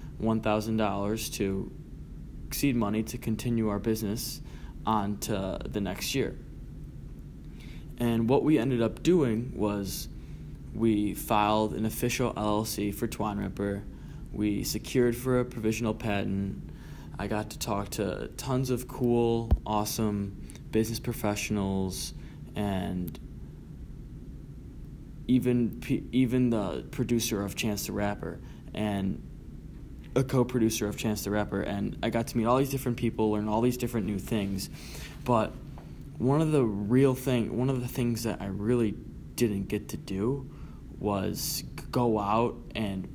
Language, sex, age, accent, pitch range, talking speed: English, male, 20-39, American, 105-120 Hz, 135 wpm